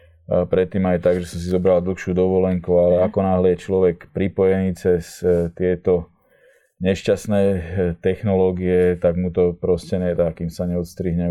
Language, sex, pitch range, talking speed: Slovak, male, 90-95 Hz, 145 wpm